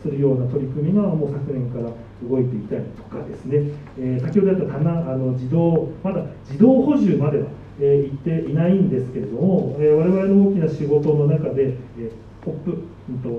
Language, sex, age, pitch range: Japanese, male, 40-59, 130-165 Hz